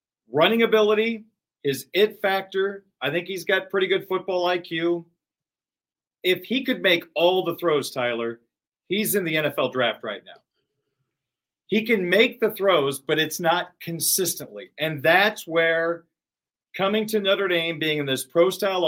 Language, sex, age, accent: English, male, 40-59, American